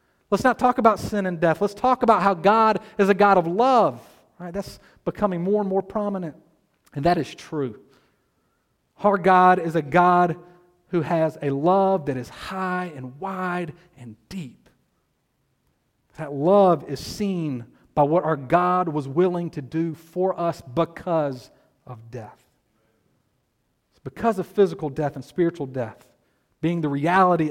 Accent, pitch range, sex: American, 140-190 Hz, male